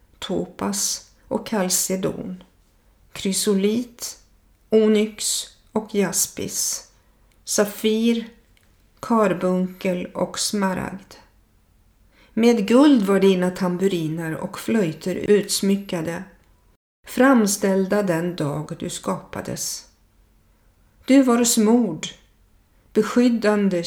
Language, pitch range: Swedish, 175-215 Hz